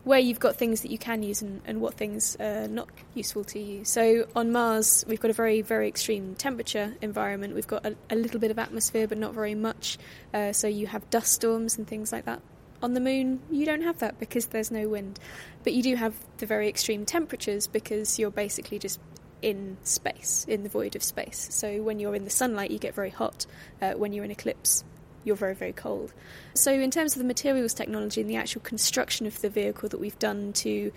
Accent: British